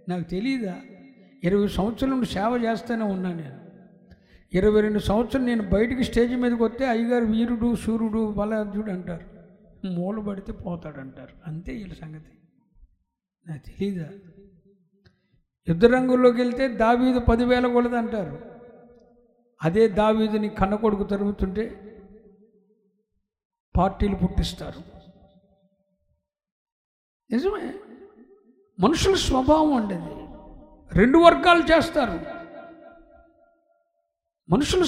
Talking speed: 85 wpm